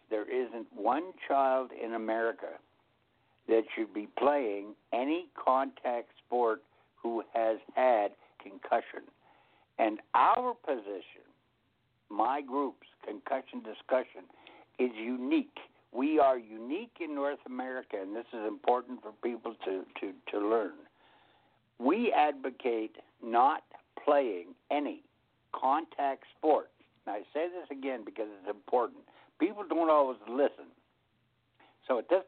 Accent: American